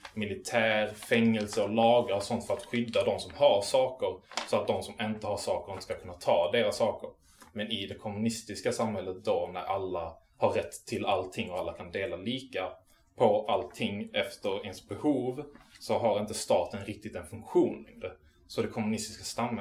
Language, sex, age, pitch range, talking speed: Swedish, male, 20-39, 95-115 Hz, 170 wpm